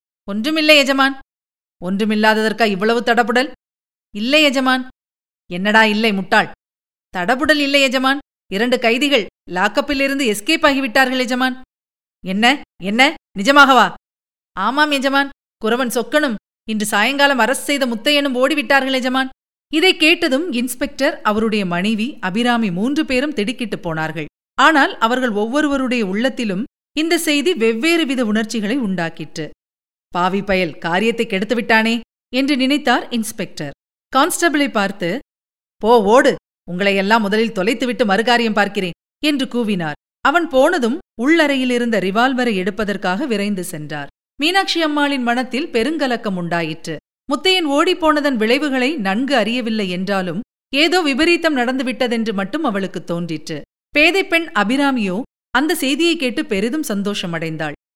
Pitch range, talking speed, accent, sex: 205-280 Hz, 110 wpm, native, female